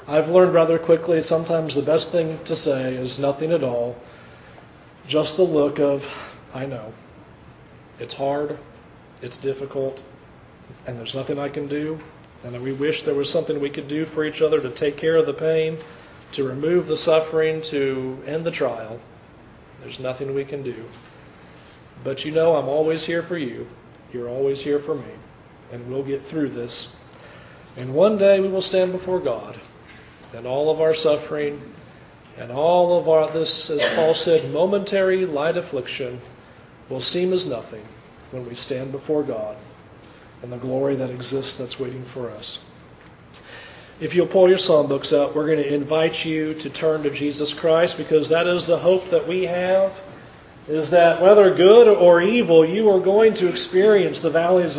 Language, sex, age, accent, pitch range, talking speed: English, male, 40-59, American, 135-170 Hz, 175 wpm